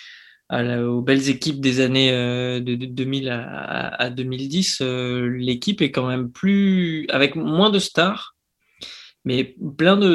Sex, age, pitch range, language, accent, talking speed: male, 20-39, 125-150 Hz, French, French, 155 wpm